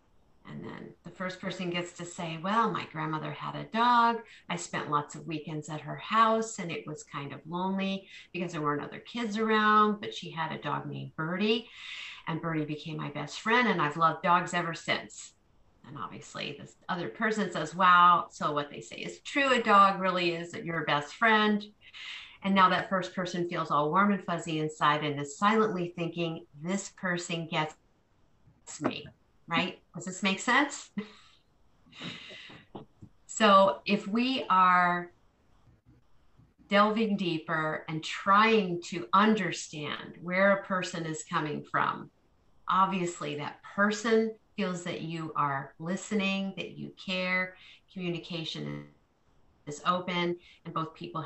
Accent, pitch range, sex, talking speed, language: American, 155-195 Hz, female, 150 wpm, English